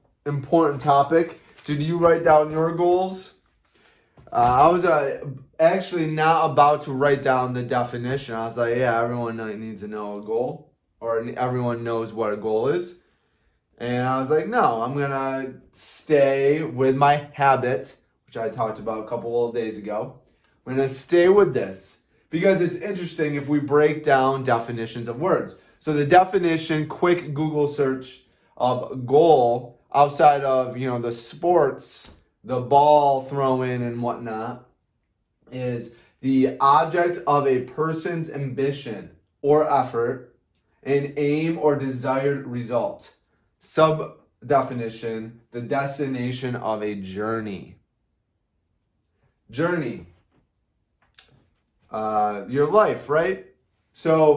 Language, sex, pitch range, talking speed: English, male, 120-150 Hz, 130 wpm